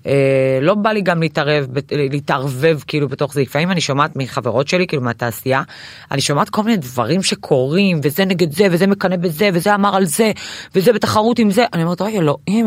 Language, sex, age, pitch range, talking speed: Hebrew, female, 20-39, 160-210 Hz, 195 wpm